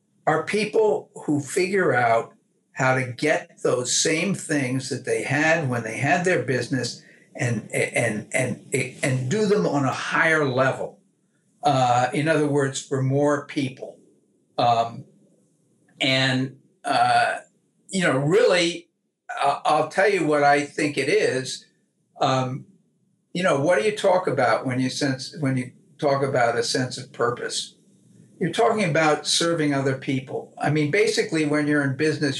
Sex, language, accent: male, English, American